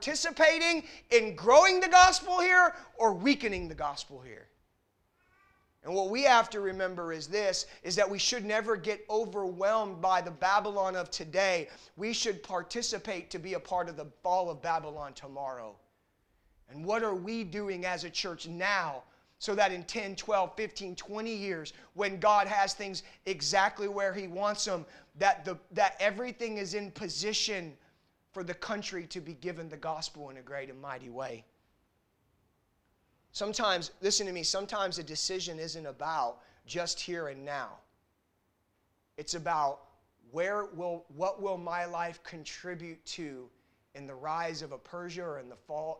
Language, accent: English, American